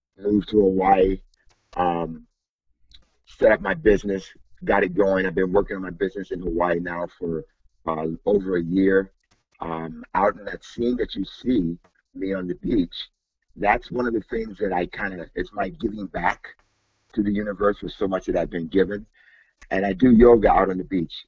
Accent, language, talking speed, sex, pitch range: American, English, 190 wpm, male, 85-95 Hz